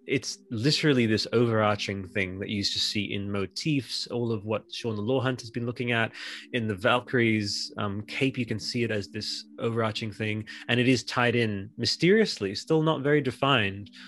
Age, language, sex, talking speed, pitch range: 20-39, English, male, 195 wpm, 100-120 Hz